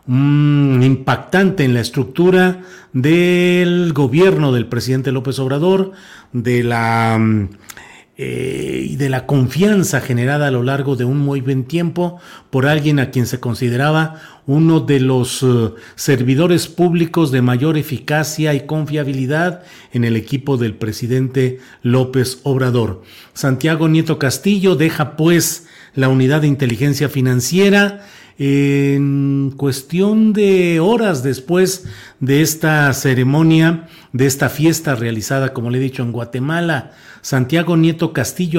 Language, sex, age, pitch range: Spanish, male, 40-59, 130-160 Hz